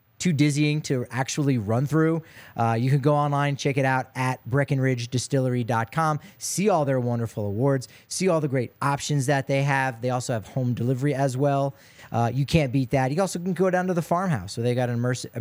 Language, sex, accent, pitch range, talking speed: English, male, American, 125-155 Hz, 210 wpm